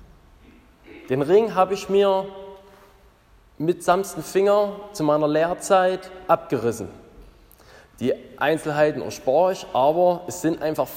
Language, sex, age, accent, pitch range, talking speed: German, male, 20-39, German, 145-185 Hz, 110 wpm